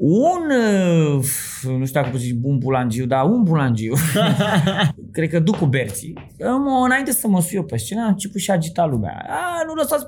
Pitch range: 135-220 Hz